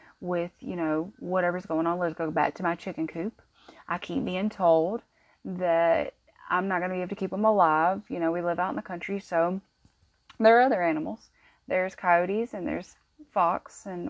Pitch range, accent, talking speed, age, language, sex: 175-215 Hz, American, 200 wpm, 20-39, English, female